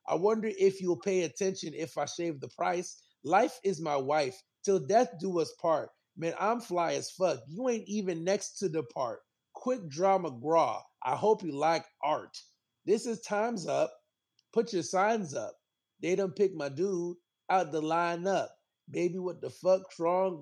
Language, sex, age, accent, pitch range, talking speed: English, male, 30-49, American, 165-200 Hz, 180 wpm